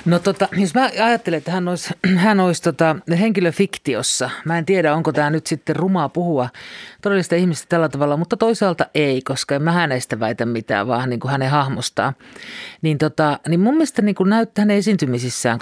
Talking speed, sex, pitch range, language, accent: 180 wpm, male, 145-195 Hz, Finnish, native